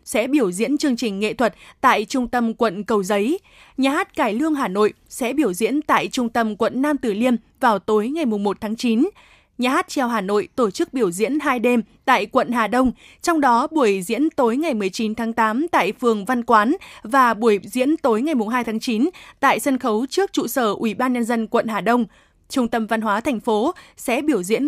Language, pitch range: Vietnamese, 225-275 Hz